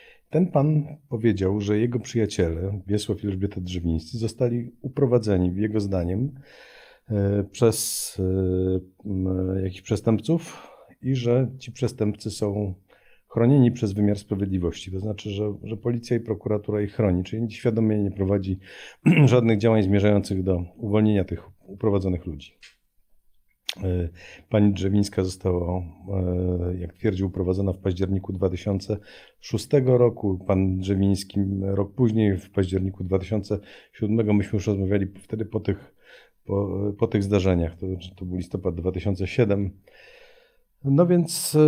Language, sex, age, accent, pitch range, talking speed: Polish, male, 40-59, native, 95-120 Hz, 115 wpm